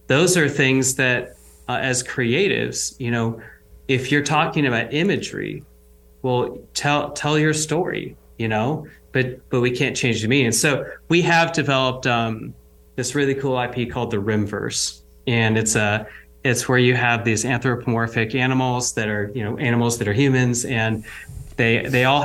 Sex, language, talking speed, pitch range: male, English, 165 wpm, 110-130 Hz